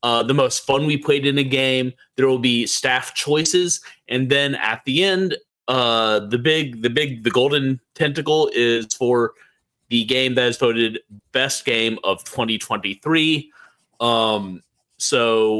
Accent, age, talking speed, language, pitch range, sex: American, 30-49, 155 wpm, English, 120-155 Hz, male